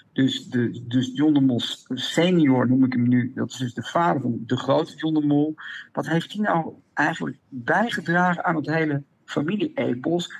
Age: 60-79